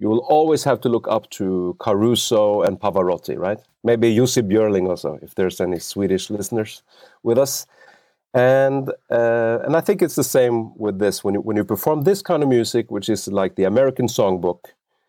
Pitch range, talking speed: 95-135 Hz, 190 wpm